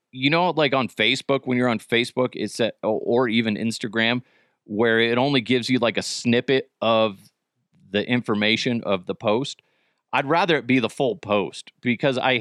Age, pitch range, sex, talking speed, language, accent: 30-49, 100-130 Hz, male, 180 wpm, English, American